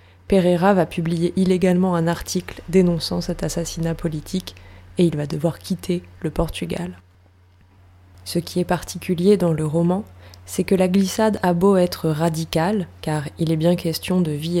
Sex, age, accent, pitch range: female, 20-39, French, 145-185 Hz